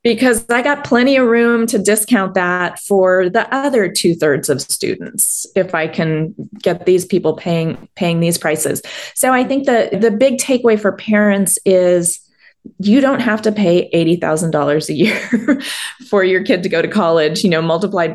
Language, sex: English, female